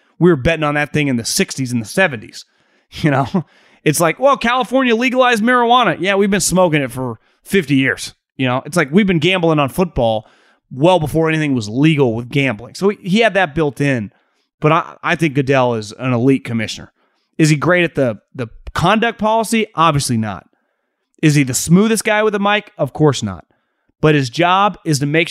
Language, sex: English, male